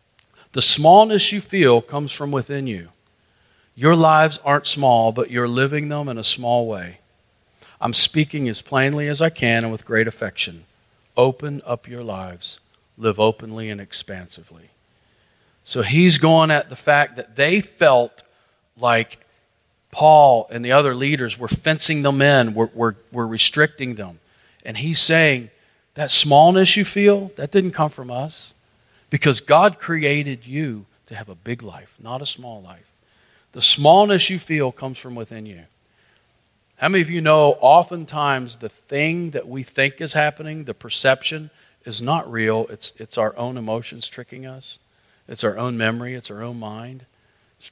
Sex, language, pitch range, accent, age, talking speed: male, English, 110-145 Hz, American, 40-59, 160 wpm